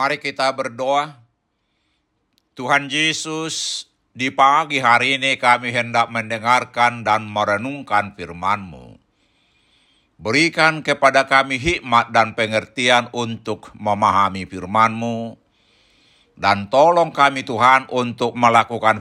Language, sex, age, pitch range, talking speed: Indonesian, male, 60-79, 115-155 Hz, 95 wpm